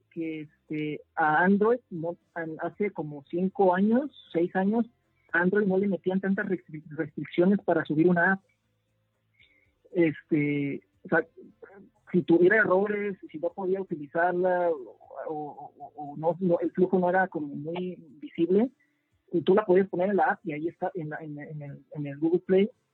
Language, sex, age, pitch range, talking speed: English, male, 40-59, 155-180 Hz, 165 wpm